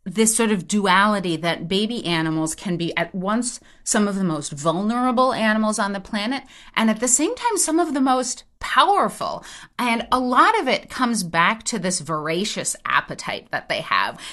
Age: 30-49